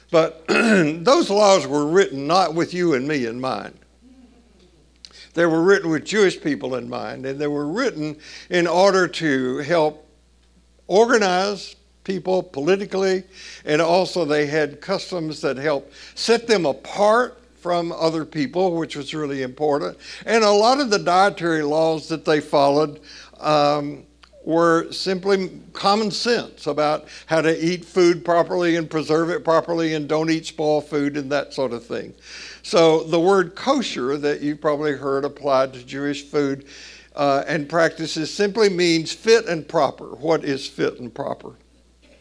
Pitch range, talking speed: 145-180 Hz, 150 wpm